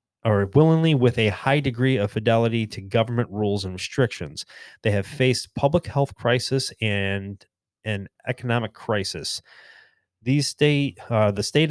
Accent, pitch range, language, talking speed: American, 105-125 Hz, English, 145 wpm